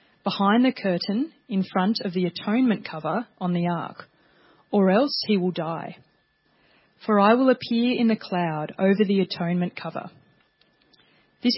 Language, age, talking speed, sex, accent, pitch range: English, 30-49, 150 wpm, female, Australian, 185-230 Hz